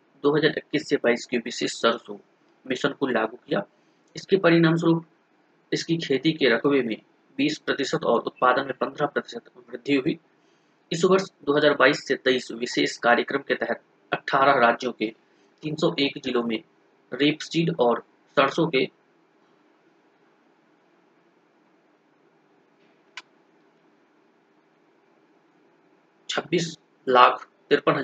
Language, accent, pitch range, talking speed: Hindi, native, 130-175 Hz, 80 wpm